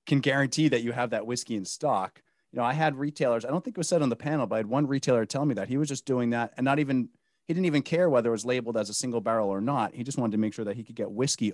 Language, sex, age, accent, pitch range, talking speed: English, male, 30-49, American, 100-130 Hz, 335 wpm